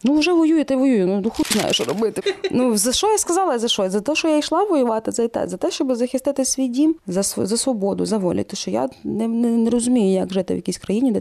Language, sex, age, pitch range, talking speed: Ukrainian, female, 20-39, 180-235 Hz, 260 wpm